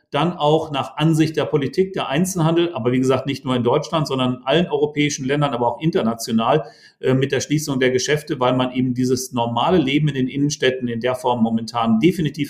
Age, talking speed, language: 40-59, 200 wpm, German